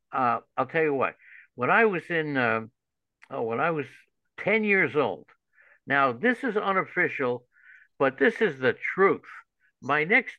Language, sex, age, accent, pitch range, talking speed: English, male, 60-79, American, 120-165 Hz, 160 wpm